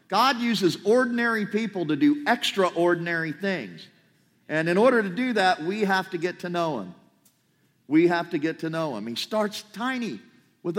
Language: English